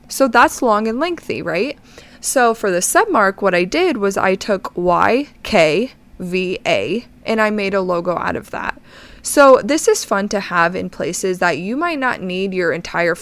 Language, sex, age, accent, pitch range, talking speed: English, female, 20-39, American, 180-240 Hz, 195 wpm